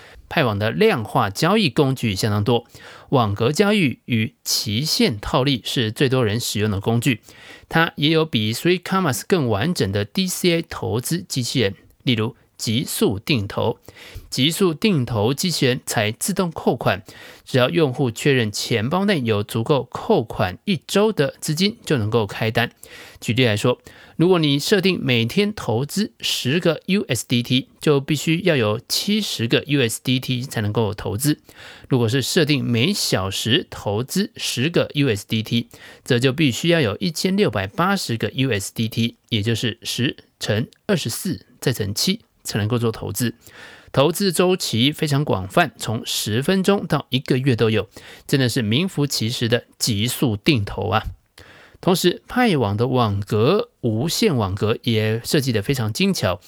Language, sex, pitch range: Chinese, male, 115-160 Hz